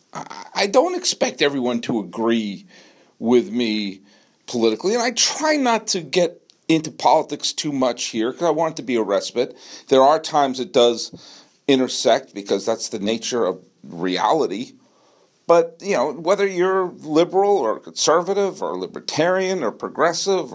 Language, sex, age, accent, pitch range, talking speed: English, male, 40-59, American, 130-195 Hz, 150 wpm